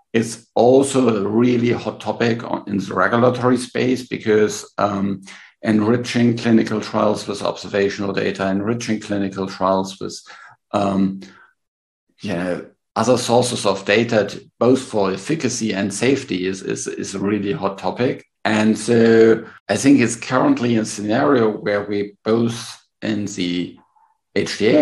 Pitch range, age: 100-115 Hz, 50-69